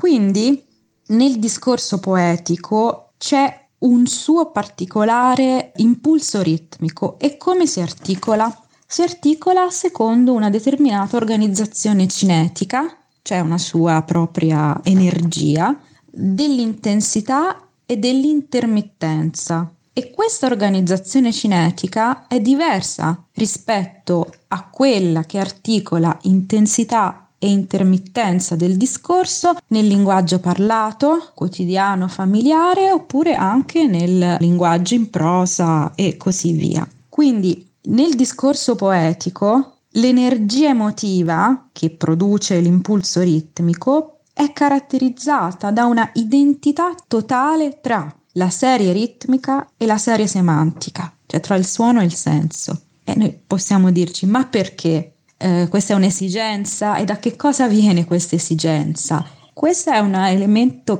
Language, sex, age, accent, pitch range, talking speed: Italian, female, 20-39, native, 175-255 Hz, 110 wpm